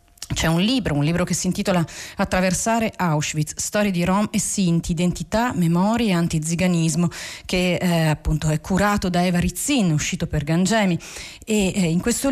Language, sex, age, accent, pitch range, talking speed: Italian, female, 40-59, native, 165-225 Hz, 165 wpm